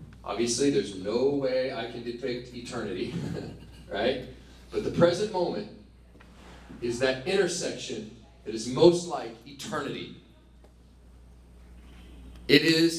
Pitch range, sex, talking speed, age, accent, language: 110-175 Hz, male, 105 wpm, 40-59, American, English